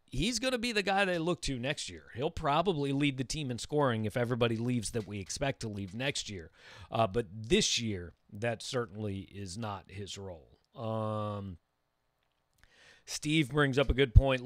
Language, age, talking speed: English, 40-59, 185 wpm